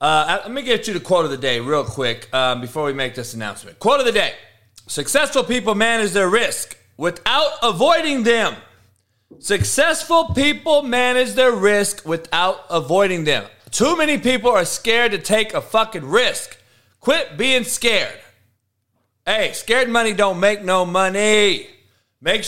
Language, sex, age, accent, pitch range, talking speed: English, male, 30-49, American, 175-235 Hz, 160 wpm